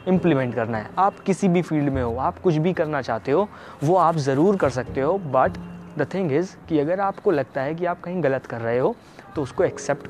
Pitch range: 125-180 Hz